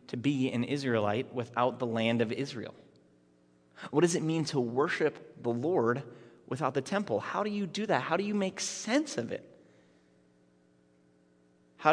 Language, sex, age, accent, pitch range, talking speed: English, male, 30-49, American, 105-145 Hz, 165 wpm